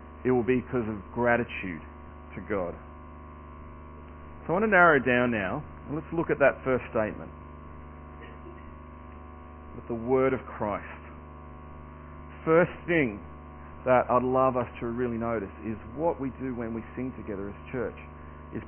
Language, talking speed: English, 150 wpm